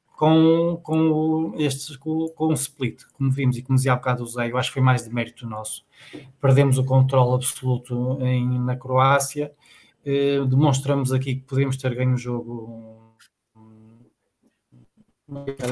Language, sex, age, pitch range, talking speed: Portuguese, male, 20-39, 130-150 Hz, 155 wpm